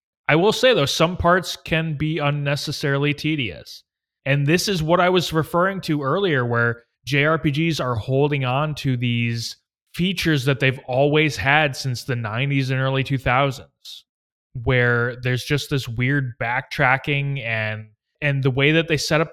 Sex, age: male, 20-39